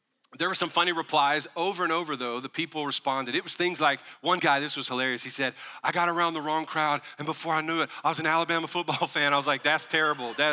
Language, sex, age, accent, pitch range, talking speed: English, male, 40-59, American, 130-160 Hz, 260 wpm